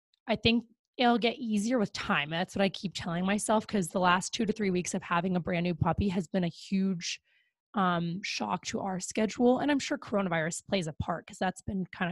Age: 20-39